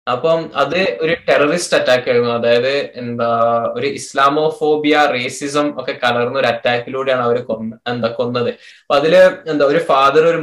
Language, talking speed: Malayalam, 145 wpm